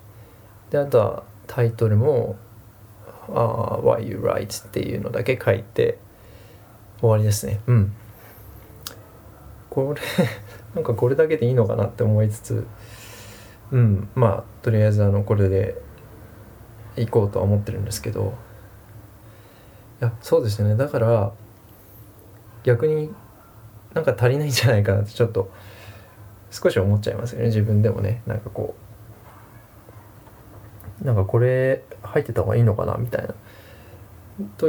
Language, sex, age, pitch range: Japanese, male, 20-39, 105-120 Hz